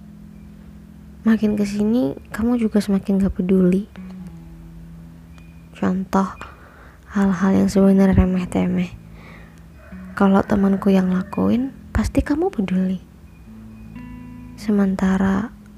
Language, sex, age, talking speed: Indonesian, female, 20-39, 75 wpm